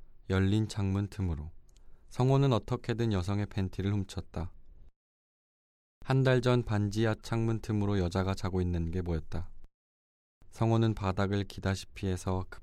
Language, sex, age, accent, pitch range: Korean, male, 20-39, native, 85-110 Hz